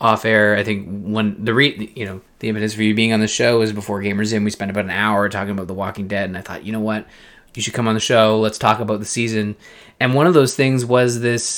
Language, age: English, 20-39